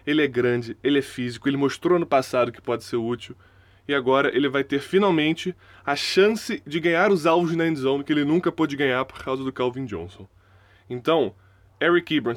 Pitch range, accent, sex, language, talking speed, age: 110-145 Hz, Brazilian, male, Portuguese, 200 wpm, 20-39